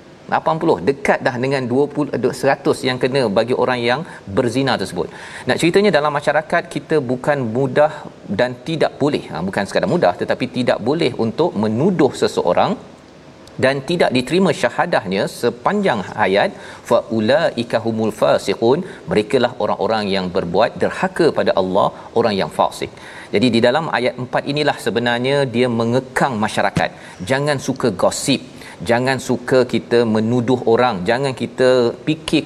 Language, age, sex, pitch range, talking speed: Malayalam, 40-59, male, 120-140 Hz, 135 wpm